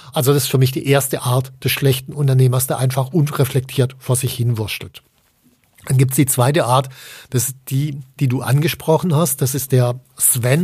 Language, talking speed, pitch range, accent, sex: German, 190 wpm, 130-155 Hz, German, male